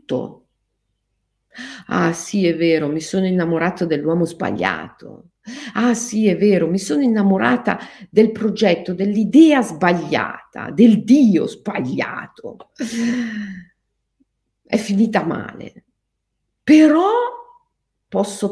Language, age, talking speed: Italian, 50-69, 90 wpm